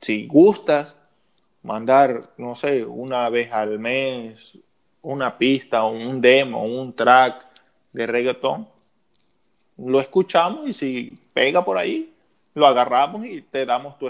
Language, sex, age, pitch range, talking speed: Spanish, male, 20-39, 125-150 Hz, 130 wpm